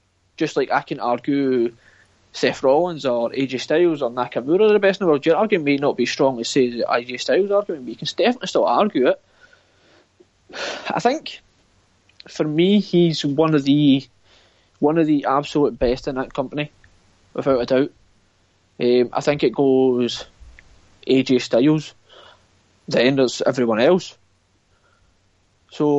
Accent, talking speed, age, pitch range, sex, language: British, 150 wpm, 20-39, 115-150 Hz, male, English